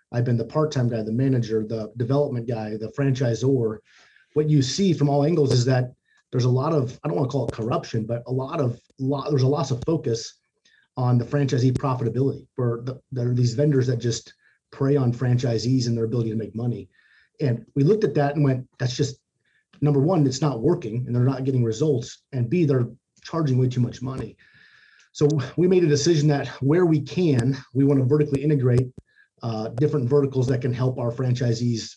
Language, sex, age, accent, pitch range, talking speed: English, male, 30-49, American, 120-145 Hz, 210 wpm